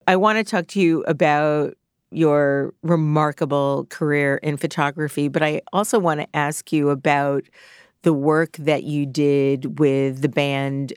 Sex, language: female, English